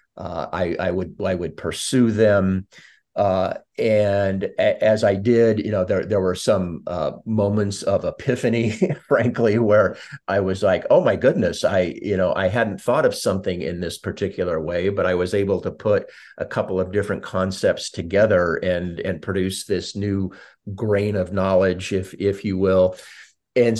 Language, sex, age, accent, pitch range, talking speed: English, male, 50-69, American, 95-110 Hz, 175 wpm